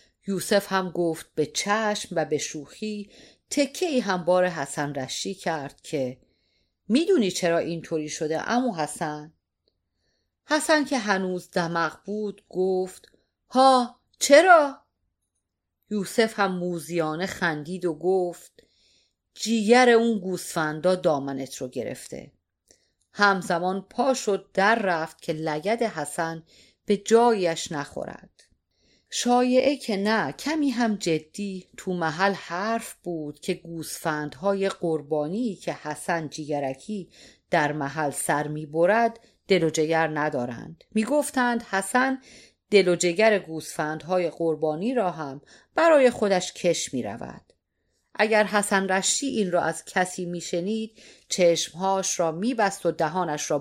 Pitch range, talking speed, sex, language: 160-215 Hz, 120 wpm, female, Persian